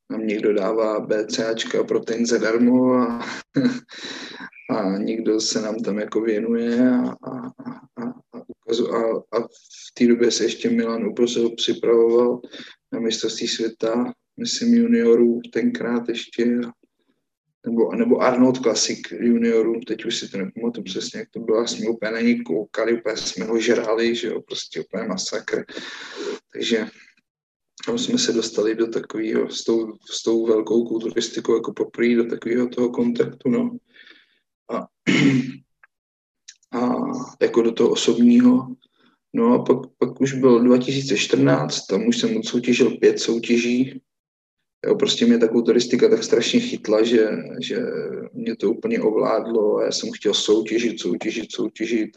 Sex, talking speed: male, 140 wpm